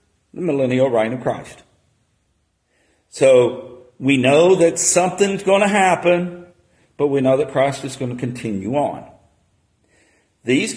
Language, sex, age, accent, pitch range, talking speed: English, male, 50-69, American, 130-170 Hz, 135 wpm